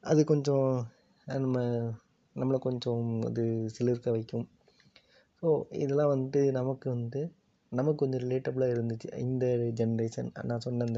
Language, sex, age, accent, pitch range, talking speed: Tamil, male, 20-39, native, 115-125 Hz, 115 wpm